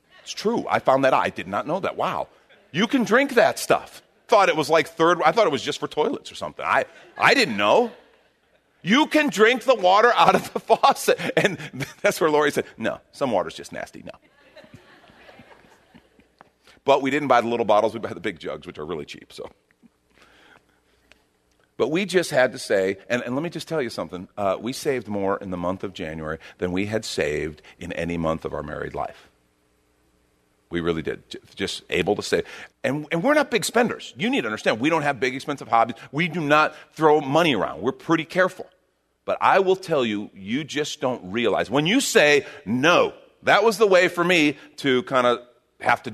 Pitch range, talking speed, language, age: 100-165 Hz, 210 wpm, English, 40-59